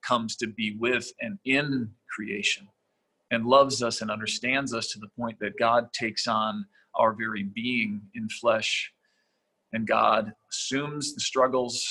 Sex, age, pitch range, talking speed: male, 40-59, 110-125 Hz, 150 wpm